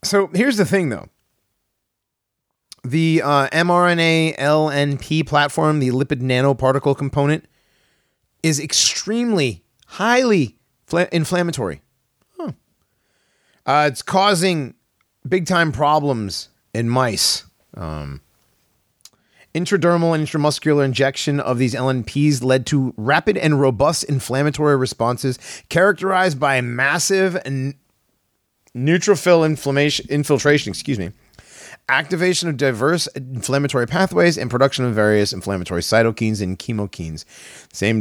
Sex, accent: male, American